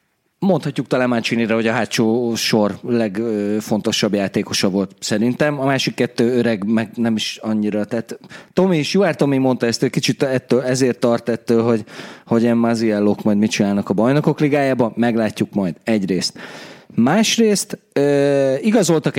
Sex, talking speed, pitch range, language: male, 145 wpm, 115-145 Hz, Hungarian